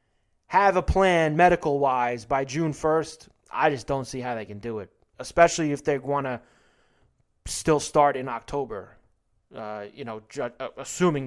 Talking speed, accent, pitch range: 155 wpm, American, 120-175 Hz